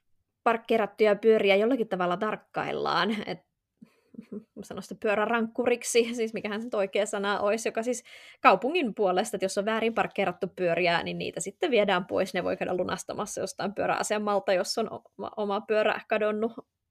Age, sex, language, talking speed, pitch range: 20-39, female, Finnish, 155 wpm, 190-220 Hz